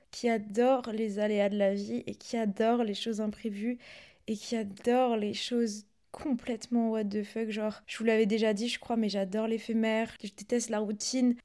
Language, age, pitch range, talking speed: French, 20-39, 225-265 Hz, 195 wpm